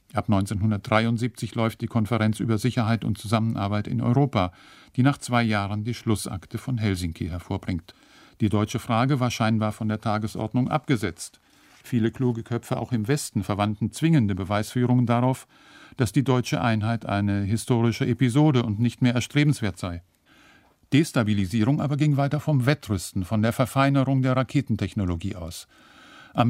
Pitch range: 105-125 Hz